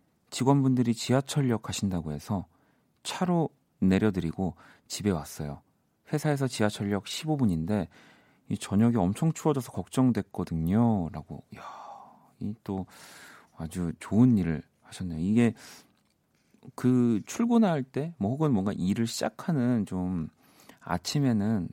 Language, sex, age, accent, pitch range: Korean, male, 40-59, native, 90-125 Hz